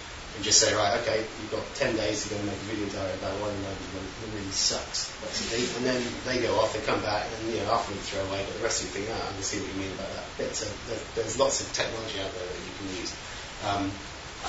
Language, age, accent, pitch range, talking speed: English, 30-49, British, 95-115 Hz, 290 wpm